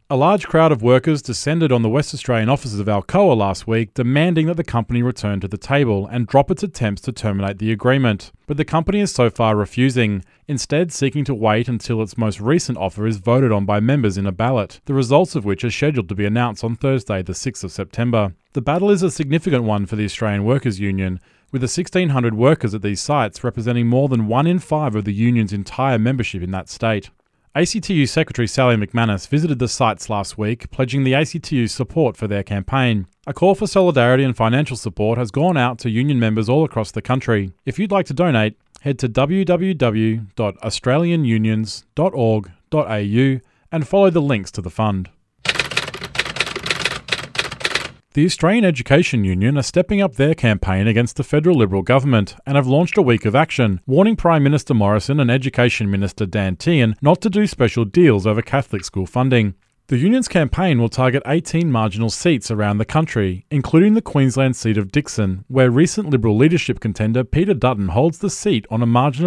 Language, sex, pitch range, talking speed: English, male, 110-145 Hz, 190 wpm